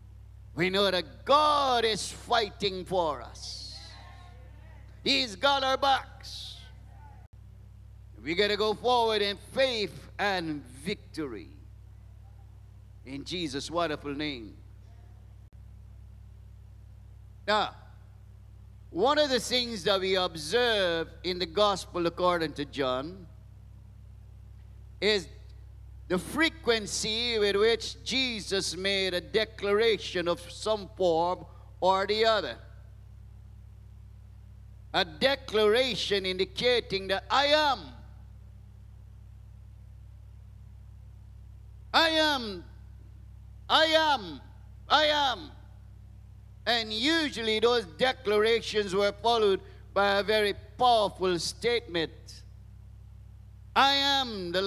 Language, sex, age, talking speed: English, male, 50-69, 90 wpm